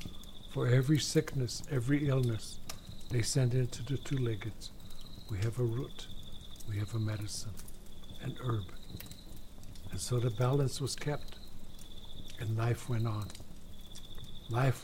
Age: 60-79